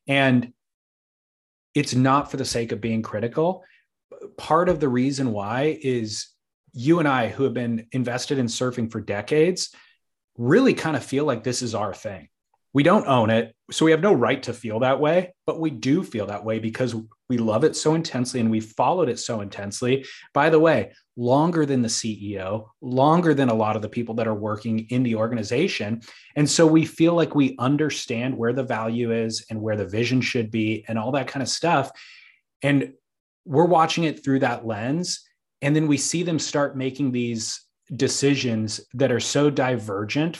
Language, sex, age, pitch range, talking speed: English, male, 30-49, 115-145 Hz, 190 wpm